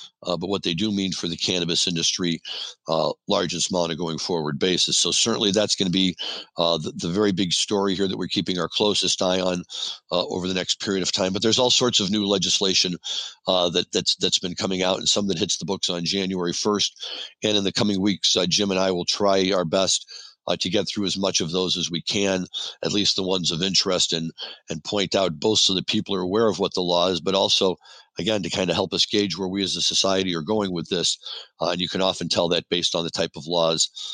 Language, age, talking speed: English, 50-69, 250 wpm